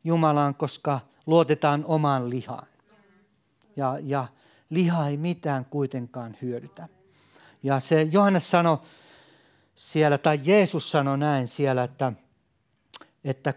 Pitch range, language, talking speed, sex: 130-170 Hz, Finnish, 105 wpm, male